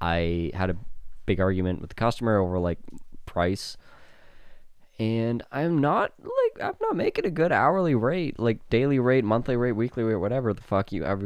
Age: 20-39